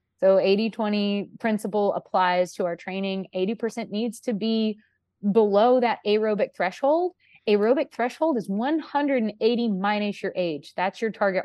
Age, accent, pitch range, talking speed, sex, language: 20-39, American, 200-275 Hz, 130 wpm, female, English